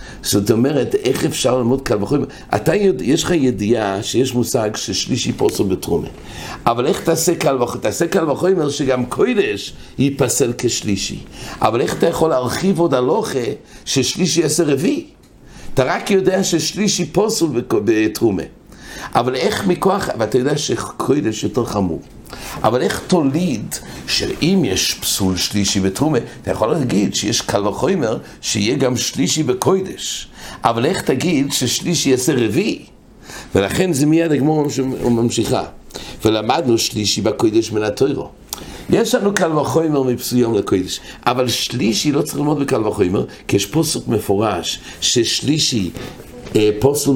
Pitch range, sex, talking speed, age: 120-170 Hz, male, 115 wpm, 60-79